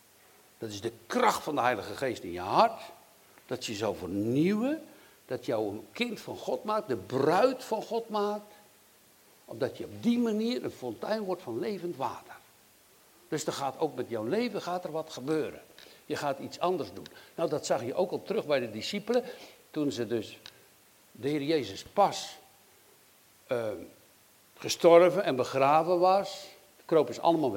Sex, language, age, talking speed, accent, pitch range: male, Dutch, 60-79, 175 wpm, Dutch, 135-205 Hz